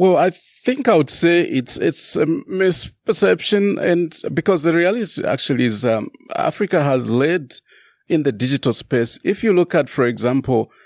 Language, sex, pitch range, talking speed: English, male, 115-145 Hz, 165 wpm